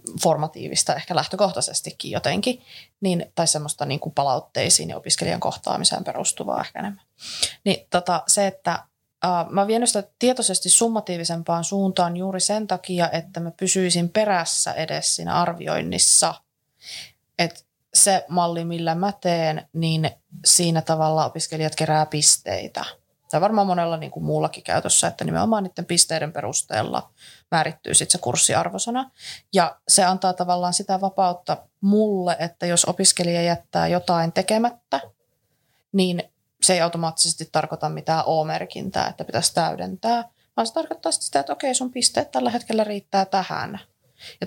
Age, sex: 20-39, female